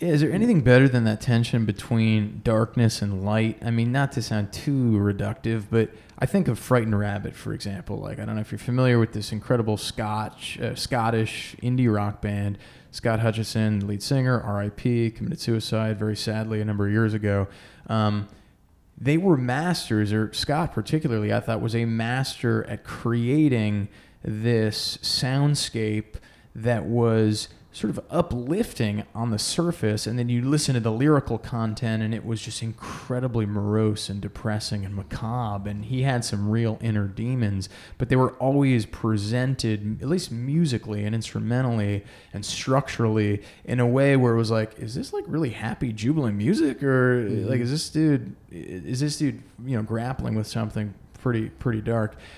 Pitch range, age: 105-125 Hz, 20-39